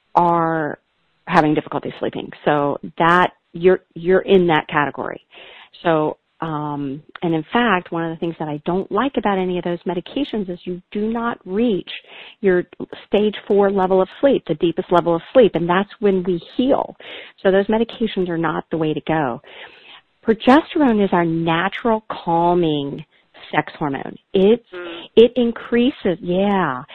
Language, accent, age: English, American, 40-59